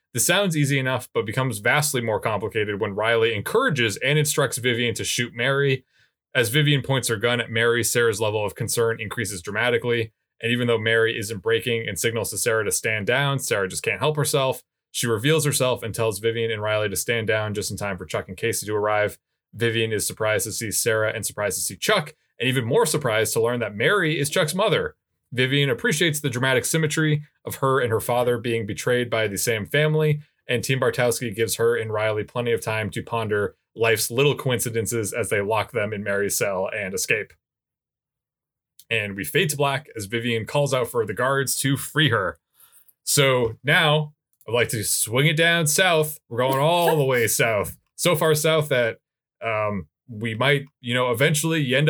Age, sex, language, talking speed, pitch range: 20-39, male, English, 200 wpm, 115-150 Hz